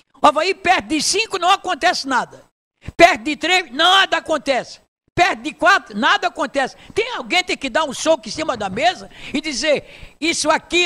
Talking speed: 180 wpm